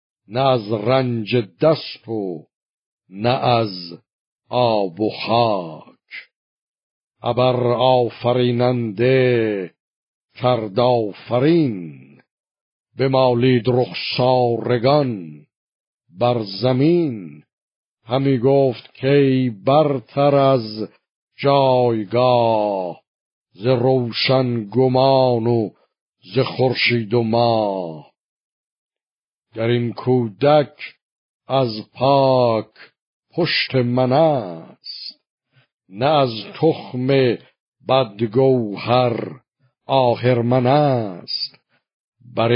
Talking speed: 70 wpm